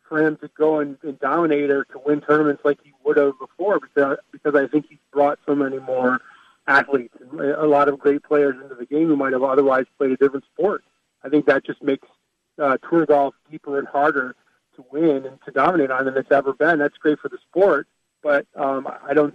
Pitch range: 135-150 Hz